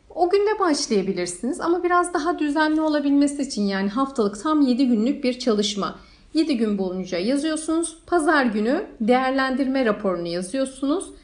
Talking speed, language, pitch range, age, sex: 135 wpm, Turkish, 230-300 Hz, 40-59, female